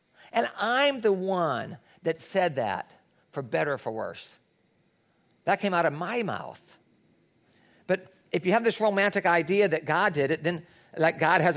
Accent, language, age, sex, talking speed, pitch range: American, English, 40-59, male, 170 wpm, 170-220 Hz